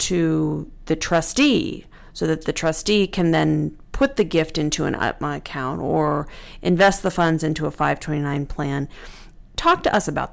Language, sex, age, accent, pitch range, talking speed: English, female, 40-59, American, 155-195 Hz, 165 wpm